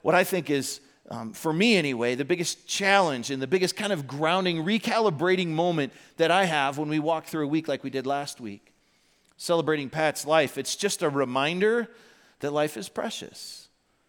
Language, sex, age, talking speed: English, male, 40-59, 185 wpm